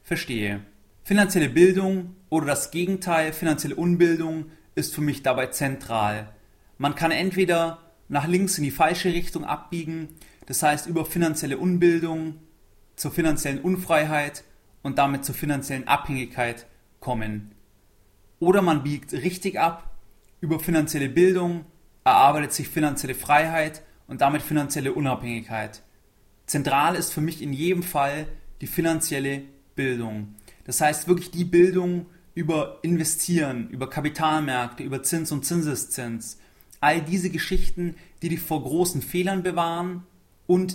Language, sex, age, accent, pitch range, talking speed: German, male, 30-49, German, 130-170 Hz, 125 wpm